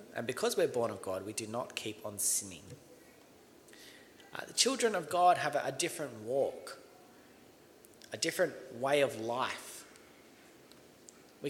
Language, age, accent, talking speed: English, 30-49, Australian, 140 wpm